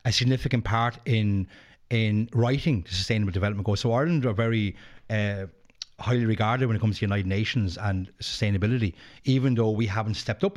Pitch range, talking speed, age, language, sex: 105-125 Hz, 175 wpm, 30-49, English, male